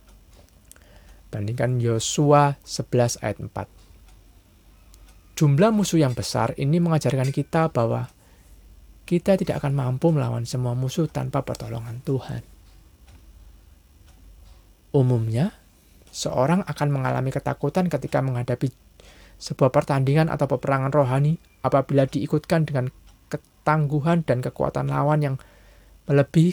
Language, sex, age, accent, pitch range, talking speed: Indonesian, male, 20-39, native, 100-145 Hz, 100 wpm